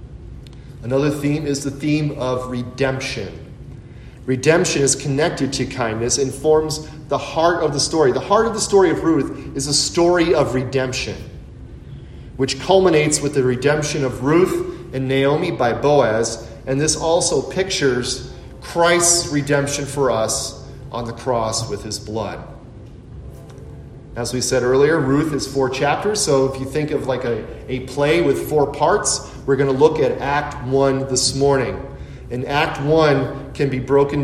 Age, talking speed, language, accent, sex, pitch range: 30-49, 160 wpm, English, American, male, 130-150 Hz